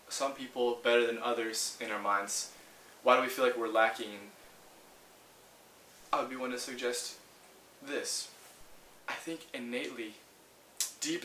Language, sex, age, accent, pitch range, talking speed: English, male, 20-39, American, 115-135 Hz, 135 wpm